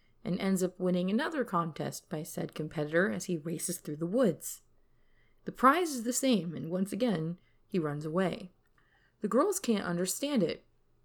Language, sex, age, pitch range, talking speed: English, female, 30-49, 165-210 Hz, 170 wpm